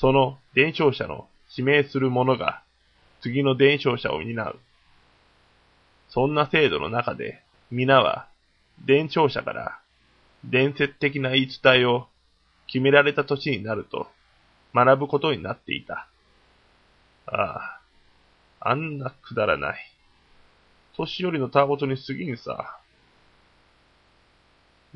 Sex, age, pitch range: male, 20-39, 90-135 Hz